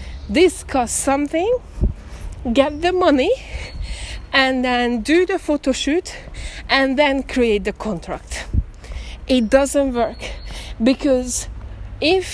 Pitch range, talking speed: 230-315 Hz, 100 wpm